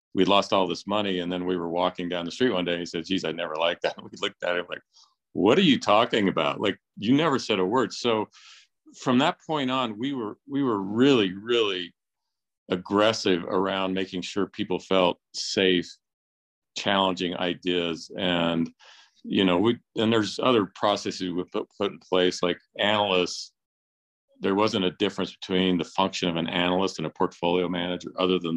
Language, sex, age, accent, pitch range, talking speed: English, male, 50-69, American, 85-95 Hz, 185 wpm